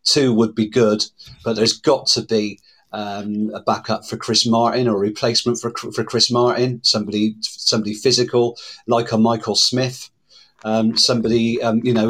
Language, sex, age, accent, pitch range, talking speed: English, male, 40-59, British, 110-125 Hz, 170 wpm